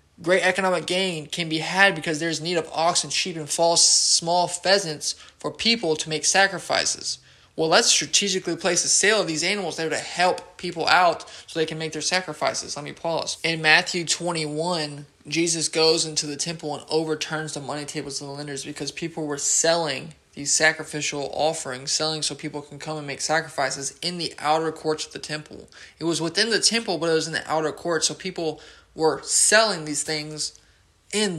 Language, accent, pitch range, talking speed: English, American, 150-170 Hz, 195 wpm